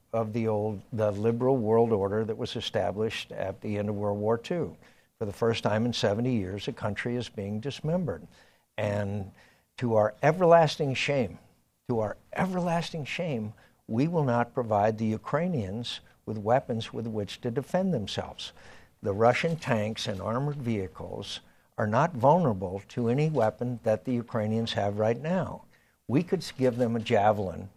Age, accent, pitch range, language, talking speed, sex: 60-79, American, 105-130 Hz, English, 160 wpm, male